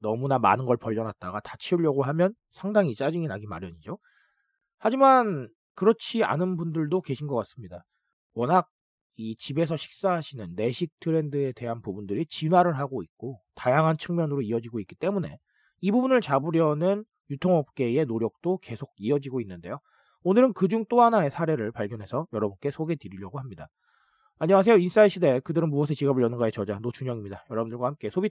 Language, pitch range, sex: Korean, 120-185 Hz, male